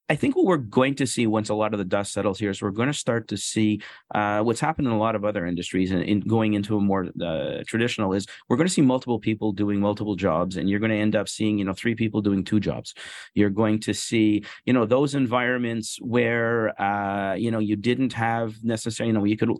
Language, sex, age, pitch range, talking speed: English, male, 40-59, 100-120 Hz, 255 wpm